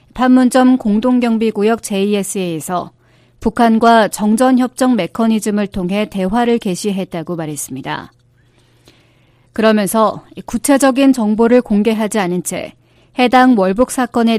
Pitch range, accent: 180-240 Hz, native